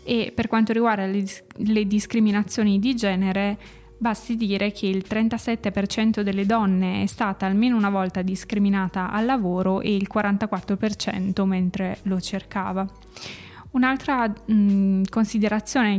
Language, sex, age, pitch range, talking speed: Italian, female, 20-39, 195-220 Hz, 120 wpm